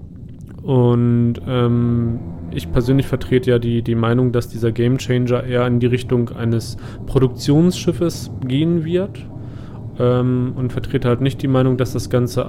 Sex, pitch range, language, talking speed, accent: male, 120-135 Hz, German, 145 wpm, German